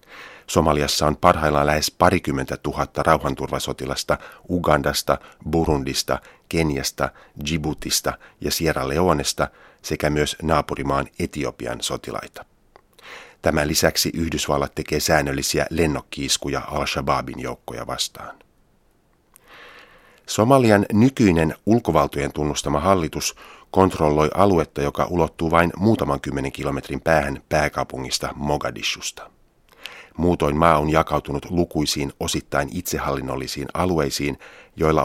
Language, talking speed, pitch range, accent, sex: Finnish, 90 wpm, 70-85 Hz, native, male